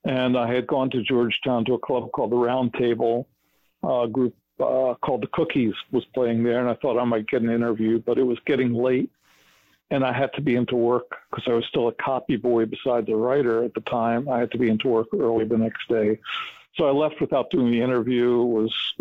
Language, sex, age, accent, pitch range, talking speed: English, male, 60-79, American, 120-130 Hz, 235 wpm